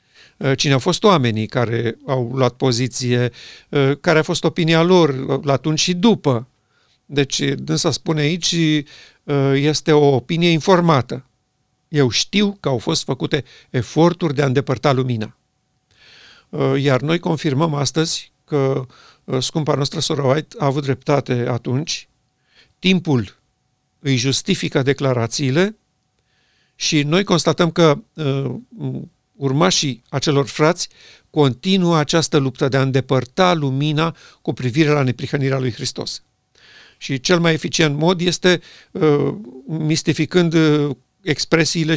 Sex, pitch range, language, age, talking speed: male, 130-165 Hz, Romanian, 50-69, 115 wpm